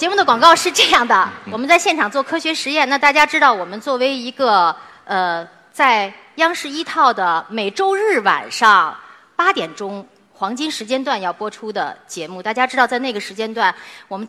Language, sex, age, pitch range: Chinese, female, 30-49, 200-290 Hz